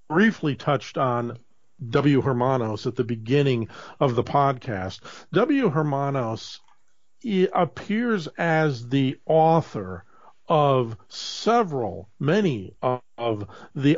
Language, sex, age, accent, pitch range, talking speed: English, male, 50-69, American, 120-155 Hz, 95 wpm